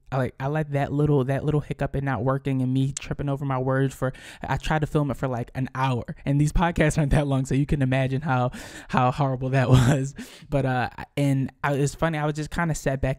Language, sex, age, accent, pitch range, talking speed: English, male, 20-39, American, 130-150 Hz, 260 wpm